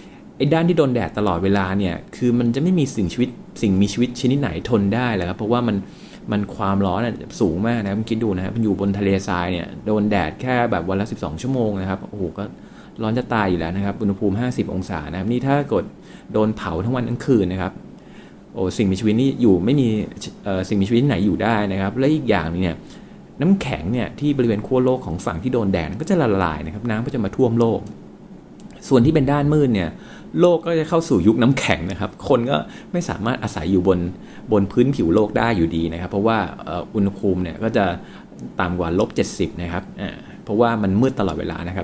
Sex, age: male, 20-39